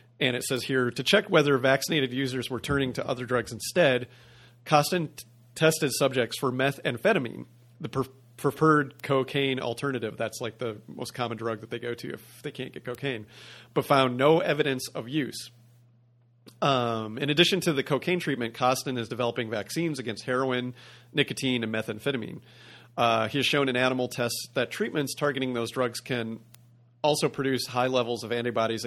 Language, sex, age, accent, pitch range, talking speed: English, male, 40-59, American, 115-135 Hz, 165 wpm